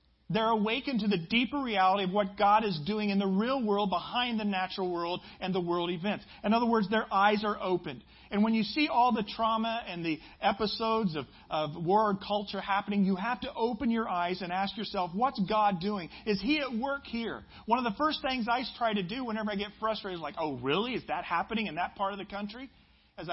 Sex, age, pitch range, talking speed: male, 40-59, 150-210 Hz, 230 wpm